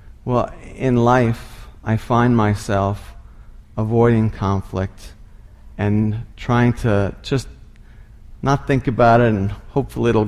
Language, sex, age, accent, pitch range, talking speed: English, male, 50-69, American, 100-125 Hz, 110 wpm